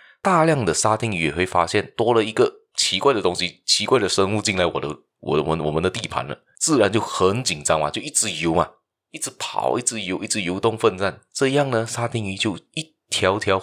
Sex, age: male, 20-39